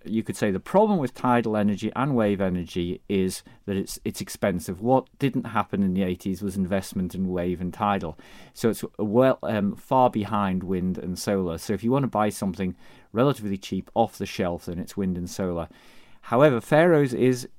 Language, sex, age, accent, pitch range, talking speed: English, male, 30-49, British, 90-115 Hz, 195 wpm